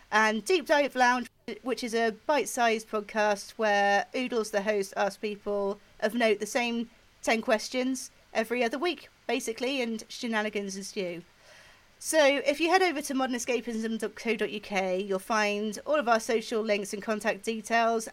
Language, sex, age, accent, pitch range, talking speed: English, female, 30-49, British, 200-250 Hz, 150 wpm